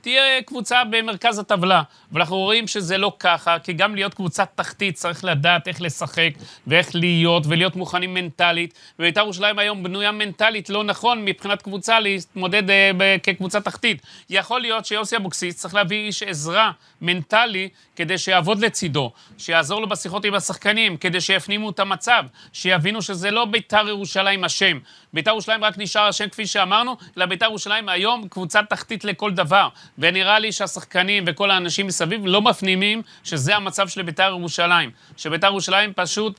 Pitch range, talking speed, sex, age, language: 175-210 Hz, 140 wpm, male, 30-49, Hebrew